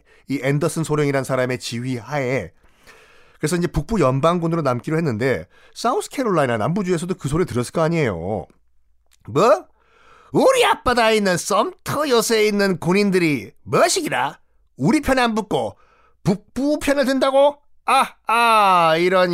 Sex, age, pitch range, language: male, 40-59, 140-220 Hz, Korean